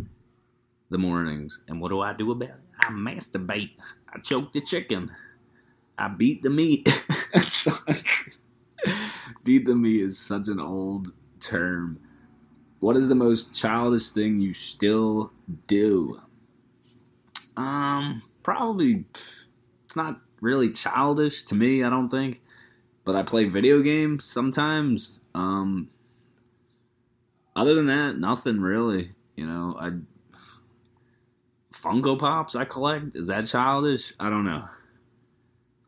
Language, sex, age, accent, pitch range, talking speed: English, male, 20-39, American, 95-125 Hz, 120 wpm